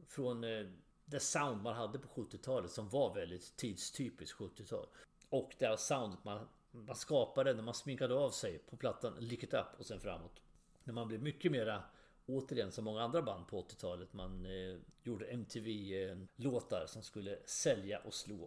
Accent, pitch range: Swedish, 100-140 Hz